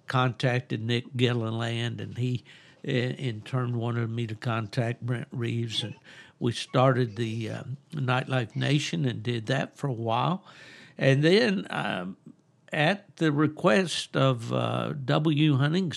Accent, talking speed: American, 135 wpm